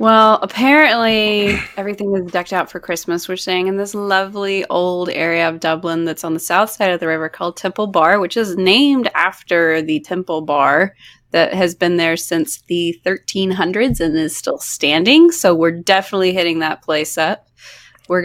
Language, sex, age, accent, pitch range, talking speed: English, female, 20-39, American, 165-195 Hz, 180 wpm